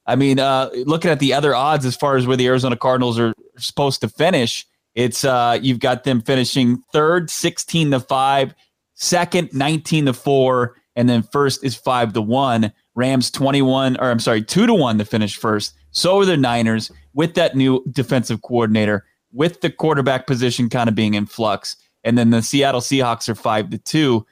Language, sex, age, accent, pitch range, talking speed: English, male, 30-49, American, 120-150 Hz, 190 wpm